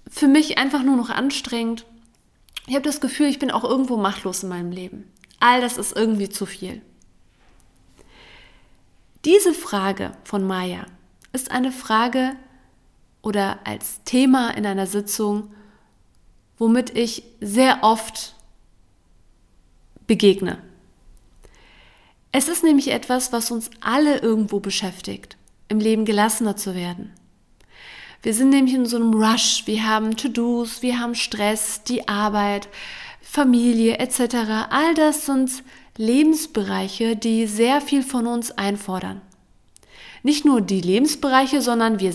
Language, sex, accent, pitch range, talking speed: German, female, German, 200-260 Hz, 125 wpm